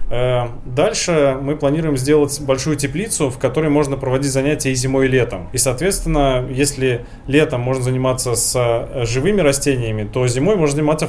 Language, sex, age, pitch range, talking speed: Russian, male, 20-39, 120-145 Hz, 150 wpm